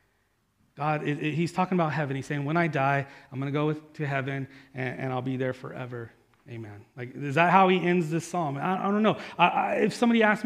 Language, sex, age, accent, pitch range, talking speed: English, male, 30-49, American, 130-195 Hz, 205 wpm